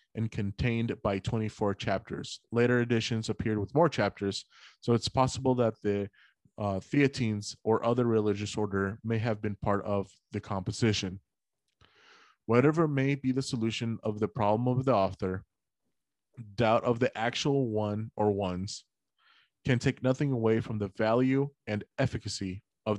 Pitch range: 105-125 Hz